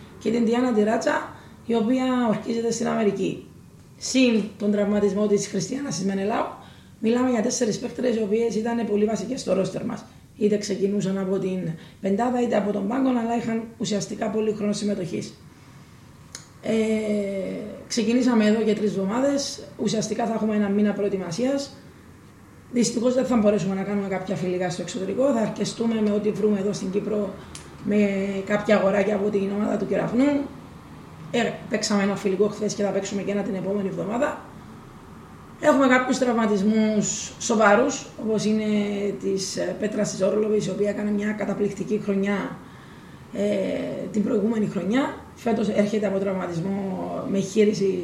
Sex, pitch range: female, 200-230 Hz